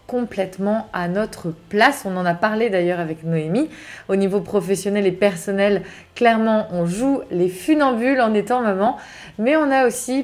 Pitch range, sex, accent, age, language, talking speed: 180-230 Hz, female, French, 20-39, French, 165 wpm